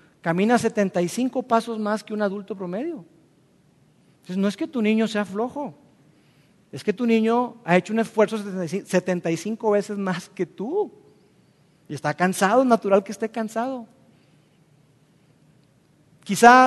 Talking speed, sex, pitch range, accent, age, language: 135 wpm, male, 175-230 Hz, Mexican, 40-59, Spanish